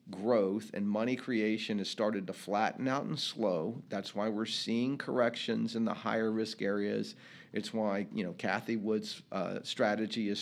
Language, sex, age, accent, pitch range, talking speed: English, male, 50-69, American, 105-140 Hz, 175 wpm